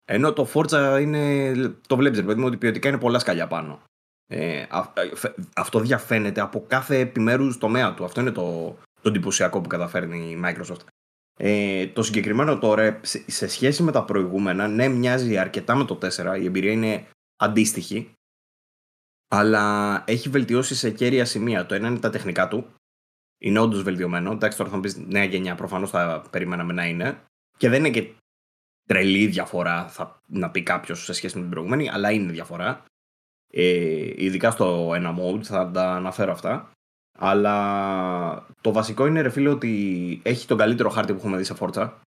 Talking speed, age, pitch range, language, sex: 175 wpm, 20-39, 90-115 Hz, Greek, male